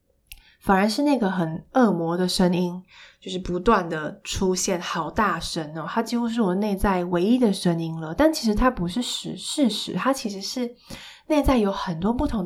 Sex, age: female, 20-39